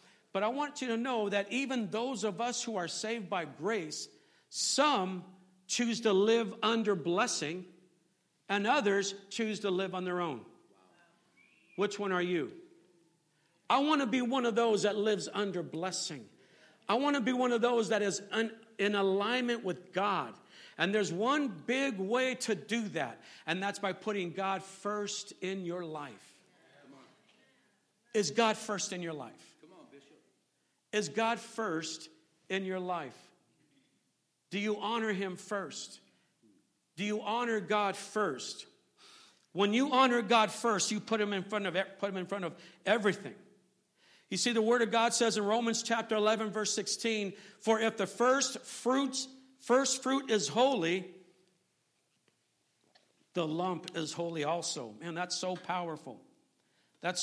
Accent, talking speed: American, 155 wpm